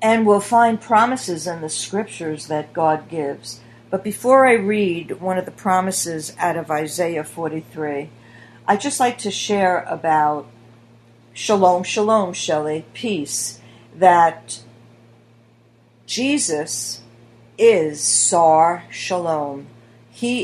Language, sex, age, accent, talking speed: English, female, 50-69, American, 110 wpm